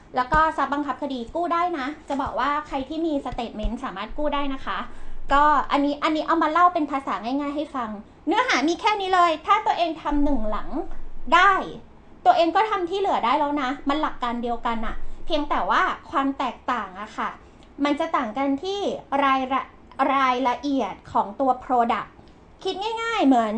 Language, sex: Thai, female